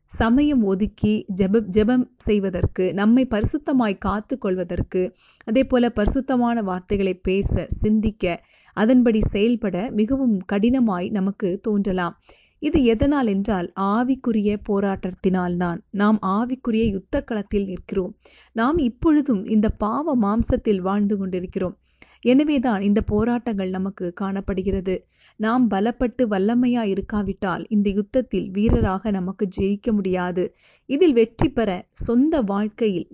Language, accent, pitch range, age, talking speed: Tamil, native, 190-235 Hz, 30-49, 105 wpm